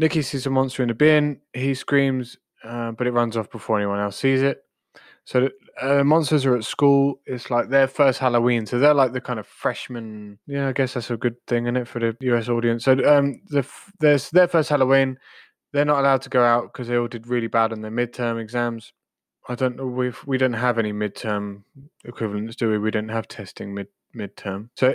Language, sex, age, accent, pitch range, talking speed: English, male, 20-39, British, 110-135 Hz, 225 wpm